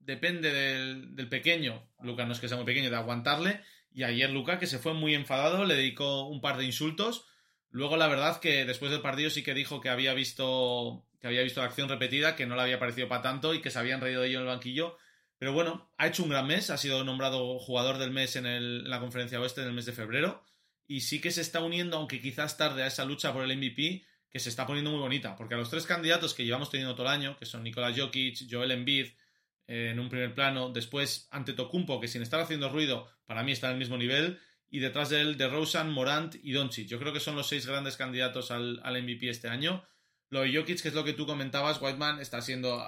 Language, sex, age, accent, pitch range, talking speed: Spanish, male, 30-49, Spanish, 125-150 Hz, 250 wpm